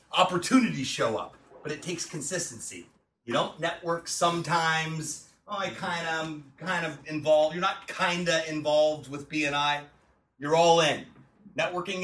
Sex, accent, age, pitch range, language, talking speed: male, American, 30-49, 145-185 Hz, English, 145 wpm